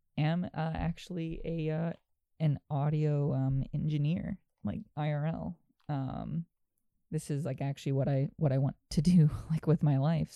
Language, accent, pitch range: English, American, 135-165 Hz